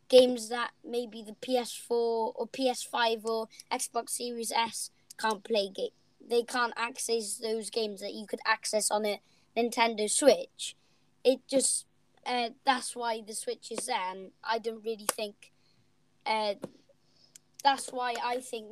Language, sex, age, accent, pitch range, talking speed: English, female, 20-39, British, 210-240 Hz, 145 wpm